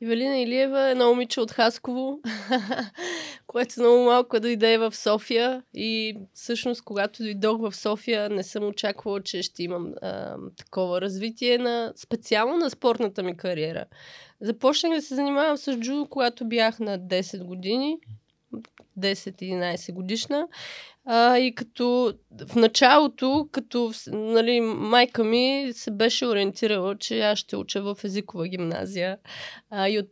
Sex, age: female, 20-39